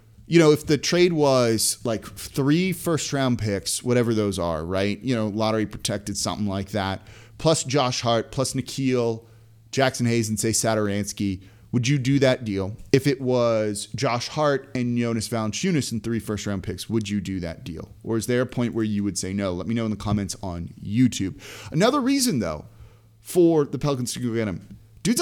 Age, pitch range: 30-49, 105-135 Hz